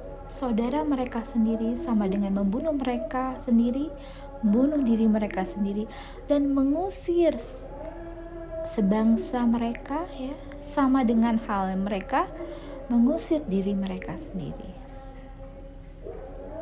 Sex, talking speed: female, 90 wpm